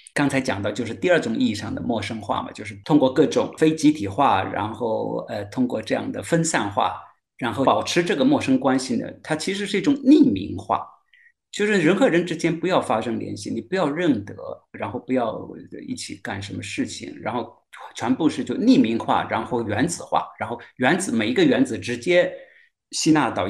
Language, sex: Chinese, male